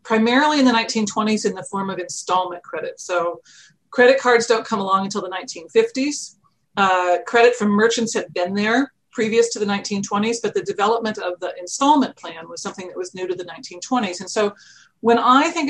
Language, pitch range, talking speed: English, 185-240 Hz, 190 wpm